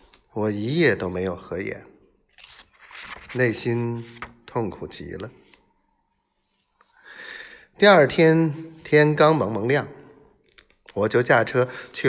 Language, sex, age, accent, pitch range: Chinese, male, 50-69, native, 115-160 Hz